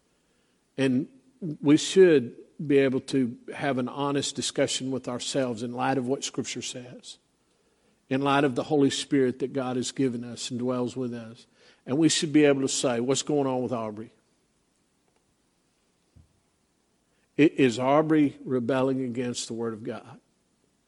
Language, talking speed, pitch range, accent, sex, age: English, 150 wpm, 120-140 Hz, American, male, 50-69